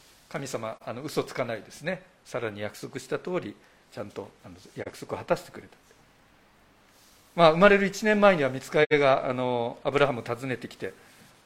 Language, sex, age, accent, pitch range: Japanese, male, 50-69, native, 120-165 Hz